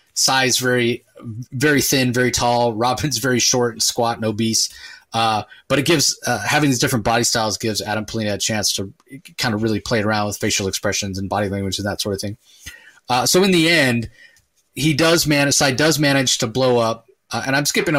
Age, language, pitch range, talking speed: 30-49, English, 110-135 Hz, 215 wpm